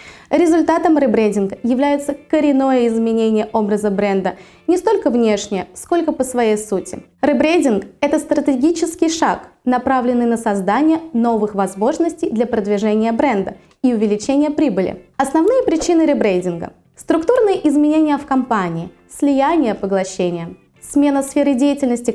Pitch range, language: 220-295 Hz, Russian